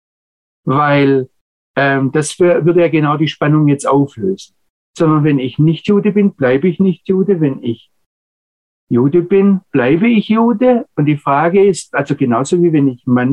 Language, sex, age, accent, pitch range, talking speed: German, male, 50-69, German, 130-175 Hz, 165 wpm